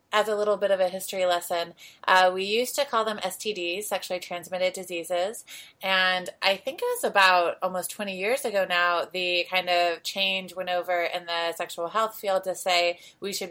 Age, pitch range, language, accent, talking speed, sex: 20-39, 175-200 Hz, English, American, 195 wpm, female